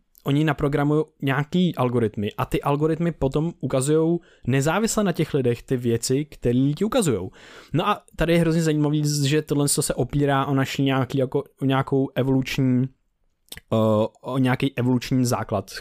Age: 20-39